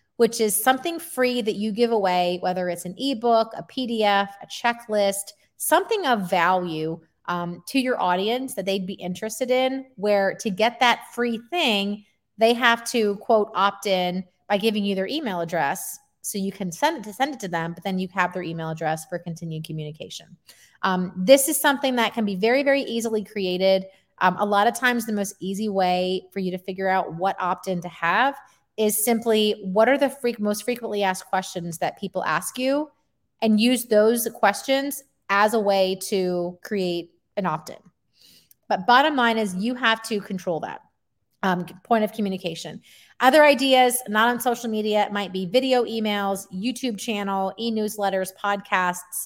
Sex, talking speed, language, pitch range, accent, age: female, 180 wpm, English, 185-235 Hz, American, 30-49